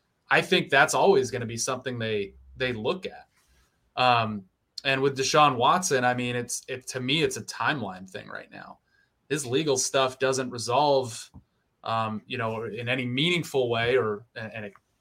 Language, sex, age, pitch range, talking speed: English, male, 20-39, 110-130 Hz, 180 wpm